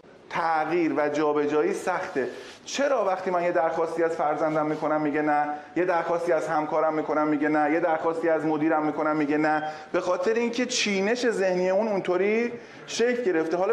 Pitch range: 160-225 Hz